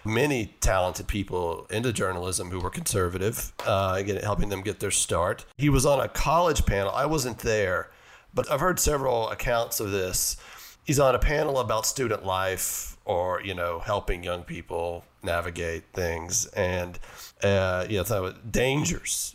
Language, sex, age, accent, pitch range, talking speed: English, male, 40-59, American, 95-120 Hz, 160 wpm